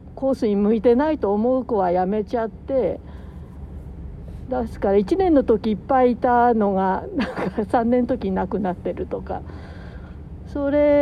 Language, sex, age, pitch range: Japanese, female, 60-79, 195-275 Hz